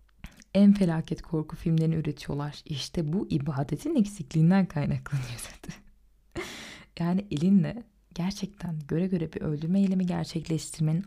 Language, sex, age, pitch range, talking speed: Turkish, female, 20-39, 160-200 Hz, 105 wpm